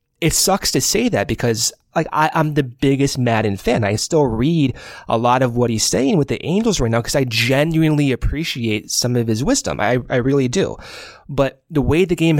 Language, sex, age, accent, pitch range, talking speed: English, male, 20-39, American, 120-155 Hz, 210 wpm